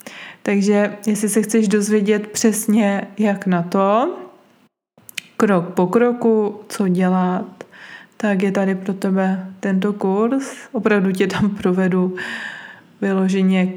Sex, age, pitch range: female, 20-39, 185-210 Hz